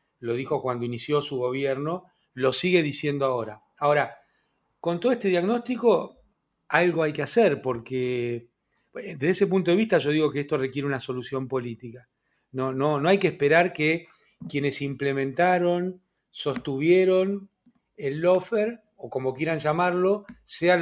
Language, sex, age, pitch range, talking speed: Spanish, male, 40-59, 135-180 Hz, 145 wpm